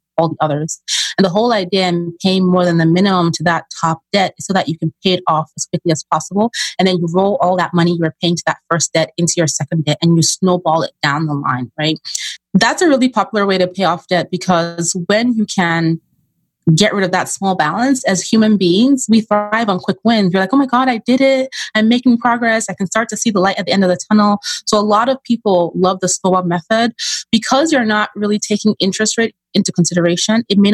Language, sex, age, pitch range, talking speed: English, female, 30-49, 170-205 Hz, 245 wpm